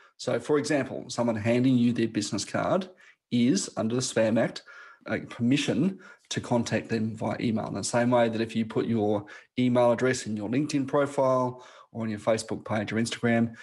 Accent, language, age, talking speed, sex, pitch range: Australian, English, 30-49, 185 wpm, male, 110-125 Hz